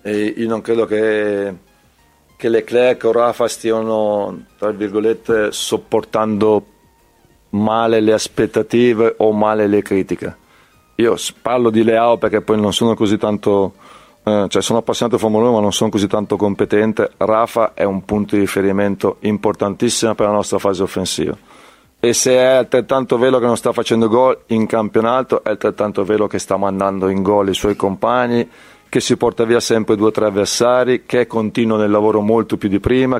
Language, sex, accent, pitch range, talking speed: Italian, male, native, 105-115 Hz, 170 wpm